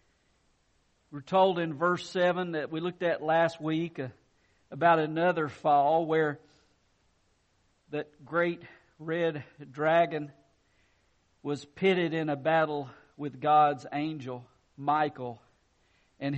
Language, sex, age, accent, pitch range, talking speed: English, male, 50-69, American, 140-190 Hz, 105 wpm